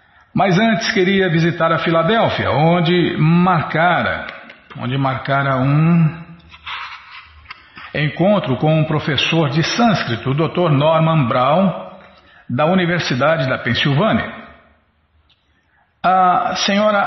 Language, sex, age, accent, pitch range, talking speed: Portuguese, male, 60-79, Brazilian, 145-190 Hz, 90 wpm